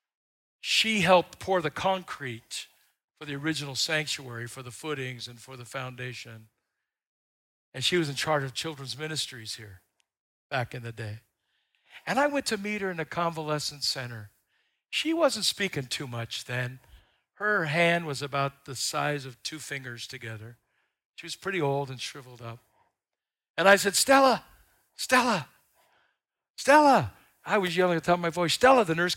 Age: 60-79